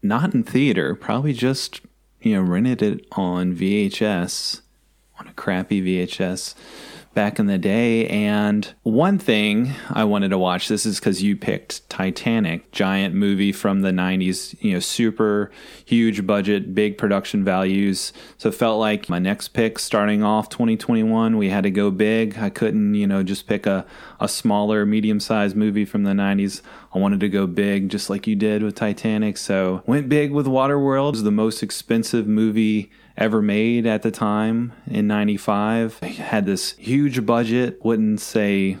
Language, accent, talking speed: English, American, 170 wpm